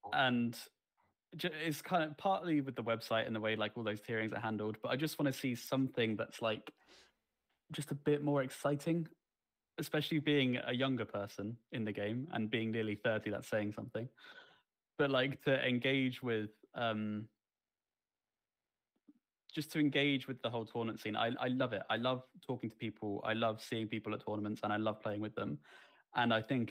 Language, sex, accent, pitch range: English, male, British, 105-130 Hz